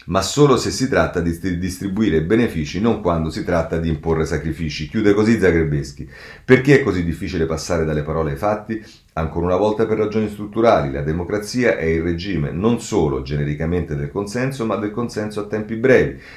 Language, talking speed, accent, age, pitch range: Italian, 180 wpm, native, 40-59, 80-105 Hz